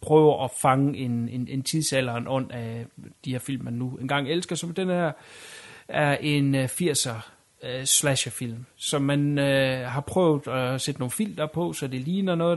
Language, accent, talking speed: Danish, native, 185 wpm